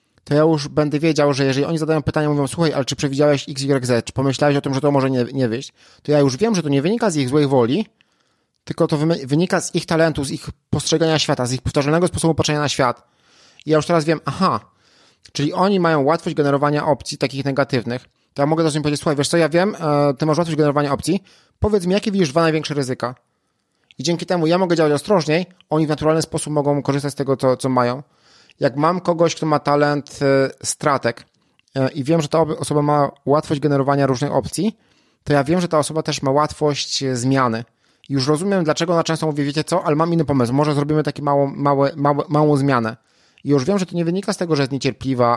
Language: Polish